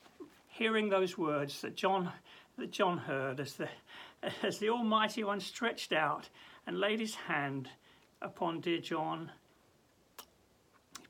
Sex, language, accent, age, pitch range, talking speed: male, English, British, 60-79, 145-200 Hz, 130 wpm